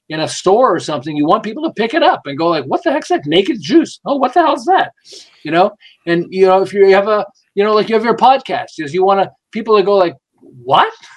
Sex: male